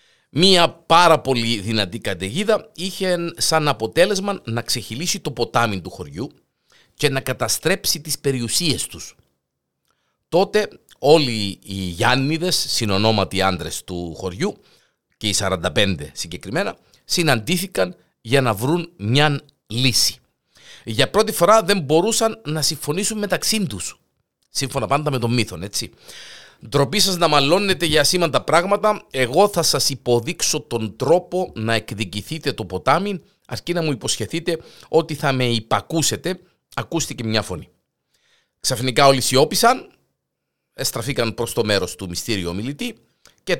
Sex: male